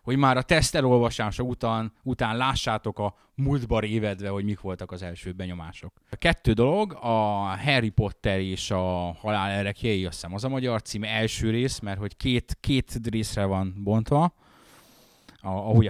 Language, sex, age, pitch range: Hungarian, male, 20-39, 100-125 Hz